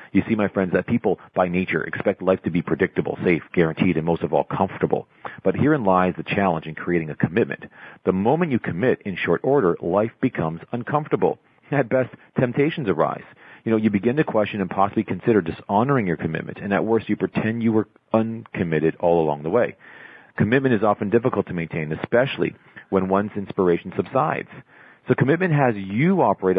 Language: English